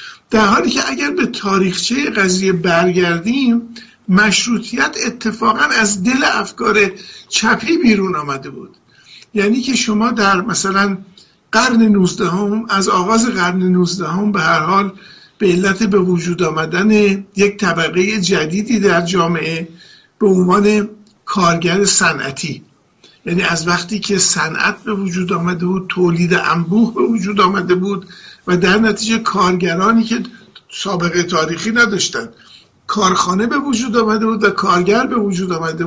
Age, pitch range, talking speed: 50-69, 180-220 Hz, 130 wpm